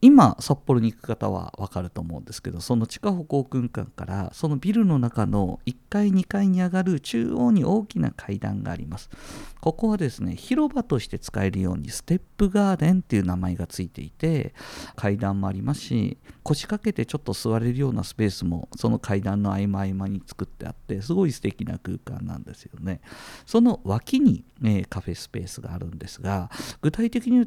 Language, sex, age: Japanese, male, 50-69